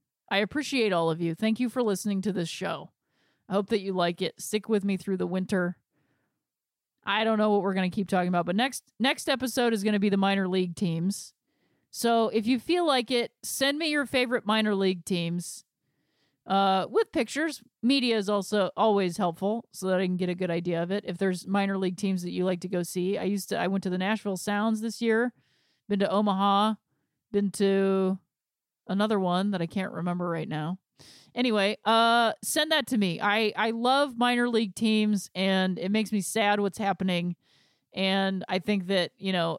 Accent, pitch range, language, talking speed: American, 185-225 Hz, English, 210 wpm